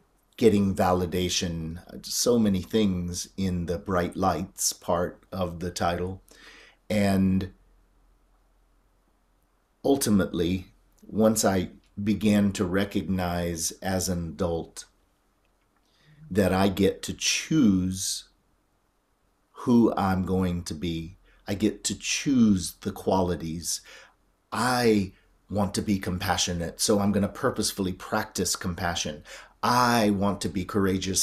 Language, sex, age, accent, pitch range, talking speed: English, male, 40-59, American, 90-105 Hz, 105 wpm